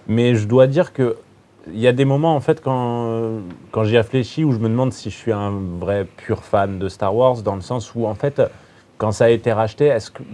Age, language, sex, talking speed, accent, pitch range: 30-49, French, male, 250 wpm, French, 95-115 Hz